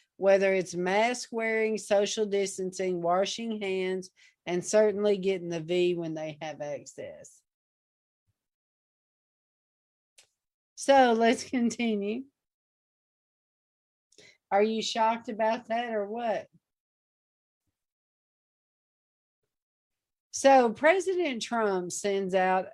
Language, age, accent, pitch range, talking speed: English, 50-69, American, 185-230 Hz, 85 wpm